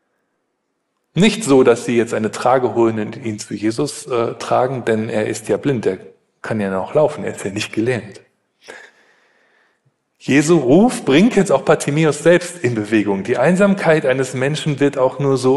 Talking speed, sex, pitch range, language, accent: 175 wpm, male, 115-155 Hz, German, German